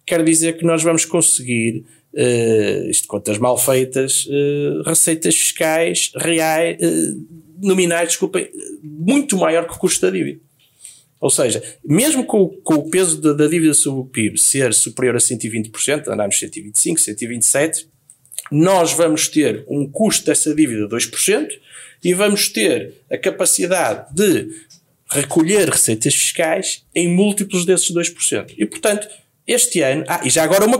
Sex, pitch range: male, 140-185 Hz